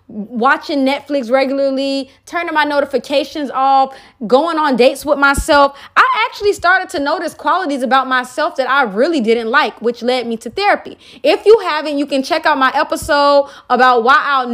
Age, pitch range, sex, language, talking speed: 20-39, 255-320 Hz, female, Amharic, 175 wpm